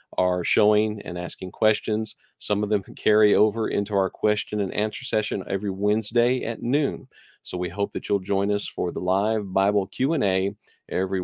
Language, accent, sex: English, American, male